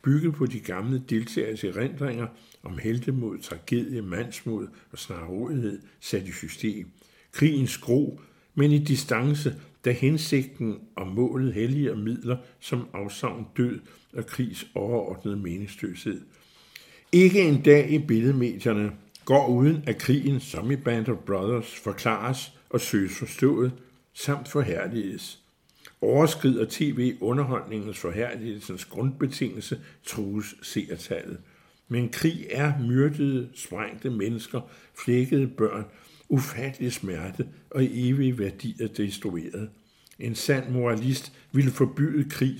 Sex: male